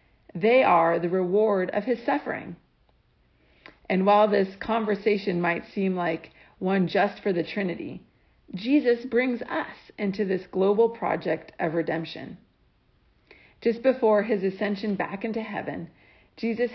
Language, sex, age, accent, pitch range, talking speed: English, female, 50-69, American, 175-225 Hz, 130 wpm